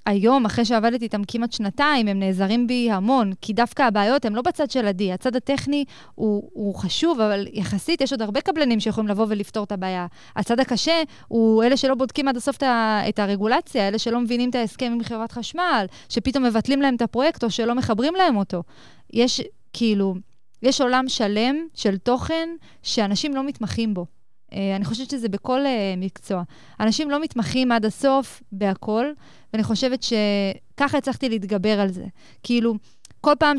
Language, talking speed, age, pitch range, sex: Hebrew, 170 wpm, 20-39, 205-260 Hz, female